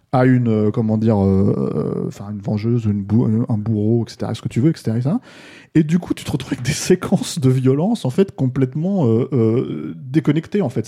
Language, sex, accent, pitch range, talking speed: French, male, French, 115-140 Hz, 225 wpm